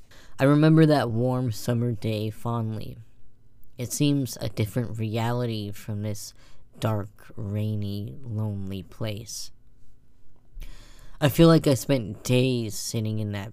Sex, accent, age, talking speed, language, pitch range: female, American, 10-29, 120 wpm, English, 110-130 Hz